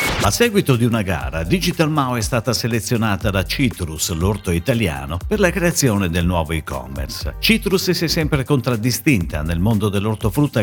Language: Italian